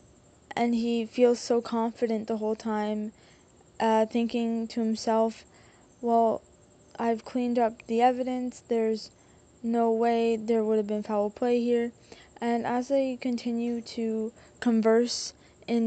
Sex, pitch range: female, 220-235 Hz